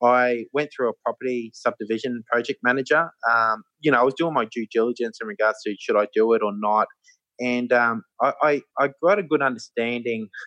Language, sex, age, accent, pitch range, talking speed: English, male, 20-39, Australian, 105-130 Hz, 200 wpm